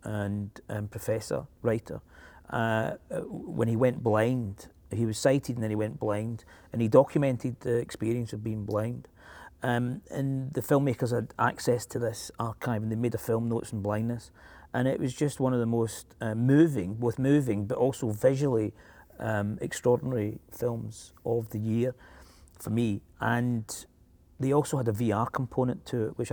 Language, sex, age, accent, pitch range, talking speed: English, male, 40-59, British, 110-130 Hz, 170 wpm